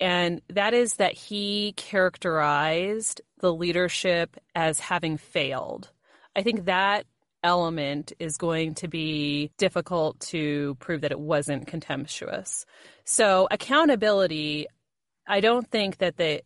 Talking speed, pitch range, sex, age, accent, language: 120 wpm, 155-200 Hz, female, 30-49, American, English